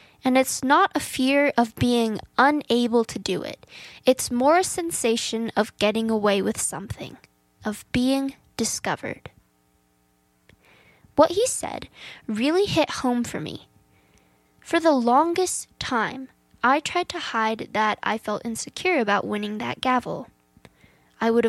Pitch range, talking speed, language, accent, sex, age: 215-275 Hz, 135 wpm, English, American, female, 10-29